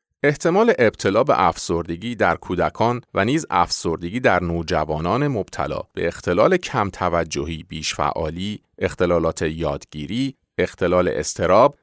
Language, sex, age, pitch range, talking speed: Persian, male, 40-59, 85-120 Hz, 110 wpm